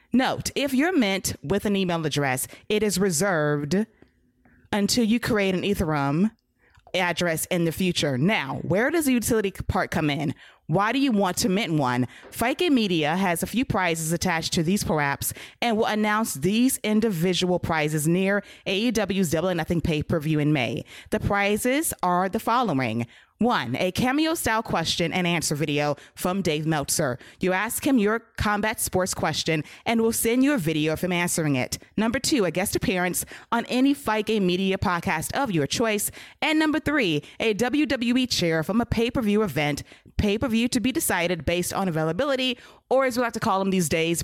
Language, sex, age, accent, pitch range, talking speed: English, female, 20-39, American, 165-230 Hz, 180 wpm